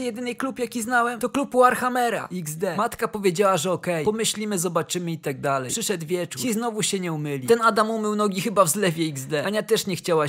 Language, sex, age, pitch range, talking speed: Polish, male, 20-39, 195-240 Hz, 215 wpm